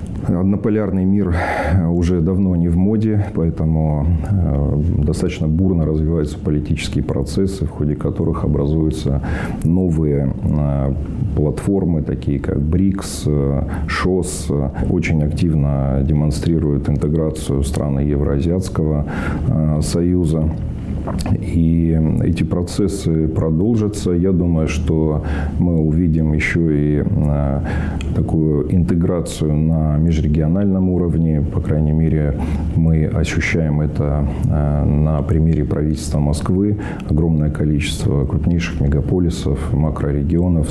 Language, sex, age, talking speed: Russian, male, 40-59, 90 wpm